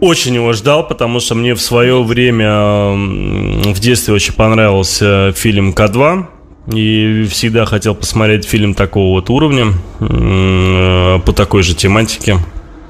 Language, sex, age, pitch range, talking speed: Russian, male, 20-39, 95-120 Hz, 125 wpm